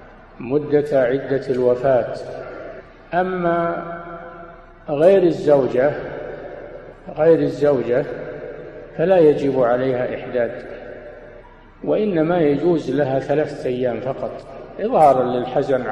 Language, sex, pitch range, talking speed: Arabic, male, 125-155 Hz, 75 wpm